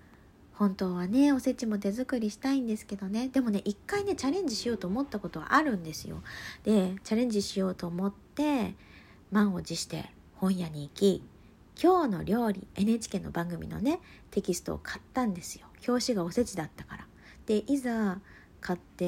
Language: Japanese